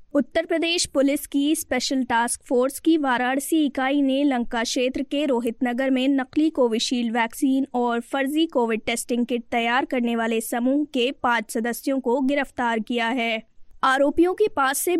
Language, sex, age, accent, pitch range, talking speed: Hindi, female, 20-39, native, 240-285 Hz, 160 wpm